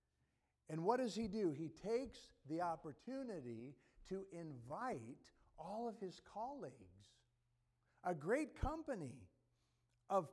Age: 50-69